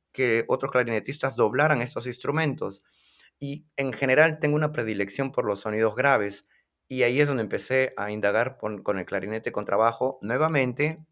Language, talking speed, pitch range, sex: Spanish, 160 wpm, 120-155 Hz, male